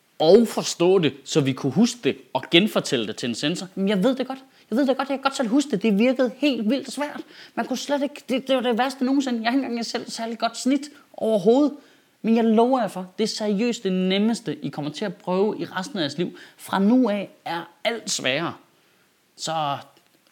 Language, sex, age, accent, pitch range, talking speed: Danish, male, 30-49, native, 160-240 Hz, 230 wpm